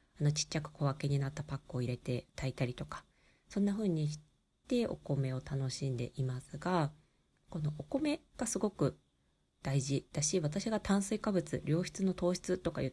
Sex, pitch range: female, 135-180 Hz